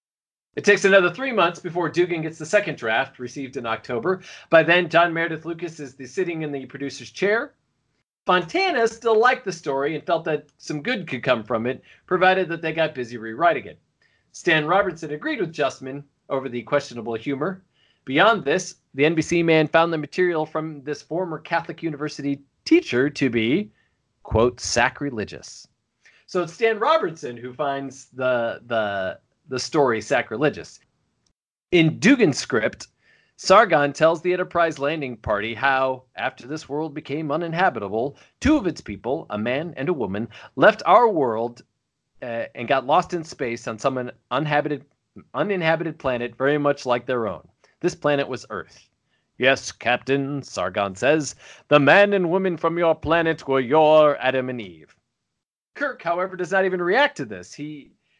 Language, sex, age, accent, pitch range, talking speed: English, male, 40-59, American, 135-175 Hz, 160 wpm